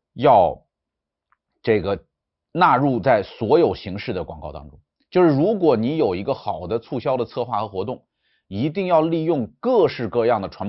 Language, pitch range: Chinese, 110-170 Hz